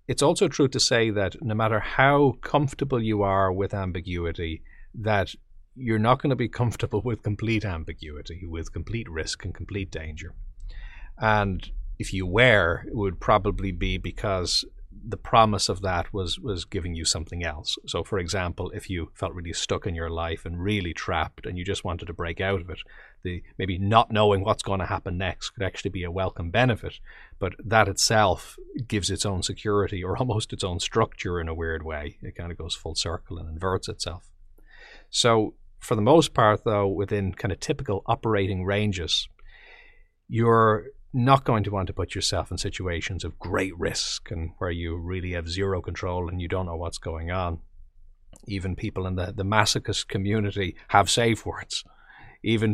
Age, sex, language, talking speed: 30-49, male, English, 185 wpm